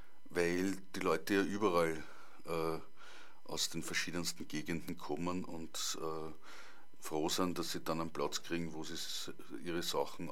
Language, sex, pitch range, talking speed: German, male, 80-90 Hz, 145 wpm